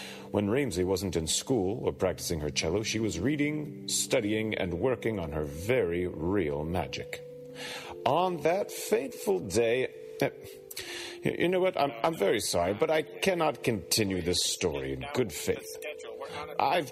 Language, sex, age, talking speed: English, male, 40-59, 145 wpm